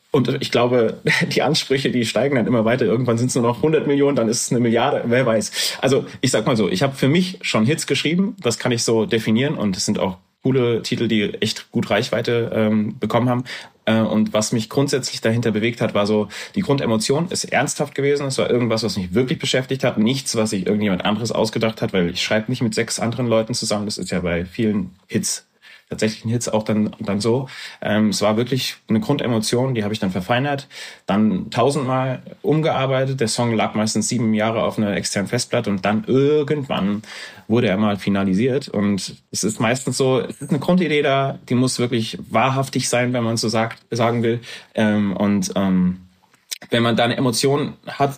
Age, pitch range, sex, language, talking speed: 30-49, 110-135 Hz, male, German, 210 wpm